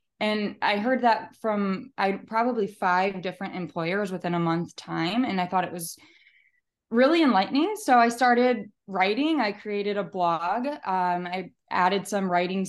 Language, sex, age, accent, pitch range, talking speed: English, female, 20-39, American, 180-220 Hz, 155 wpm